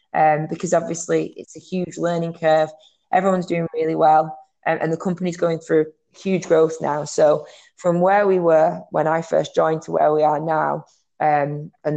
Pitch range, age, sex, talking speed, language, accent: 155-165 Hz, 20-39, female, 185 wpm, English, British